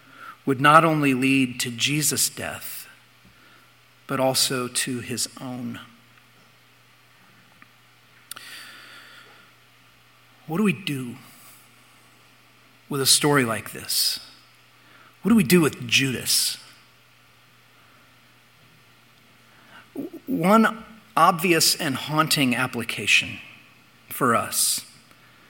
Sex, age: male, 50-69